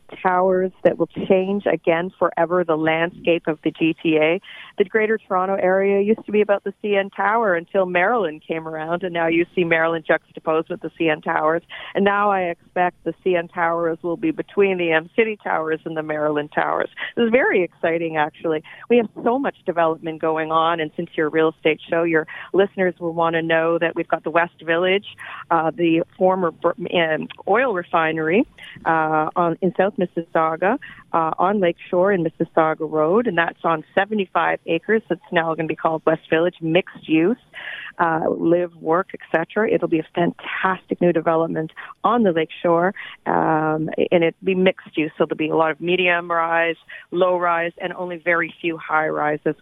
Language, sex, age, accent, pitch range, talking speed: English, female, 40-59, American, 160-190 Hz, 180 wpm